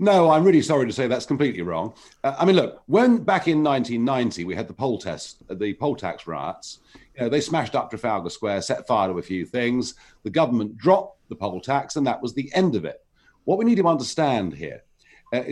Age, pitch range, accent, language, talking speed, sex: 50-69, 120-175 Hz, British, English, 230 wpm, male